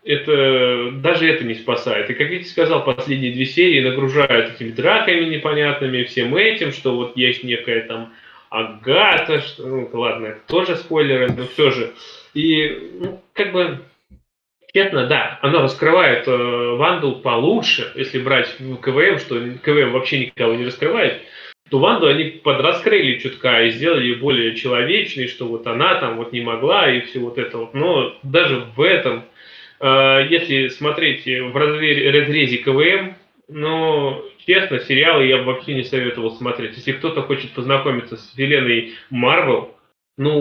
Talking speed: 150 wpm